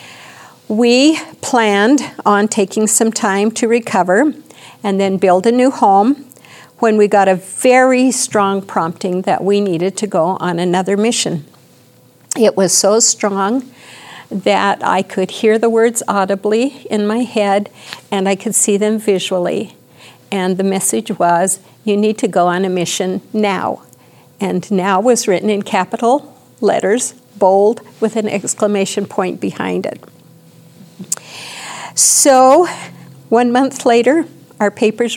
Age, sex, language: 50-69, female, English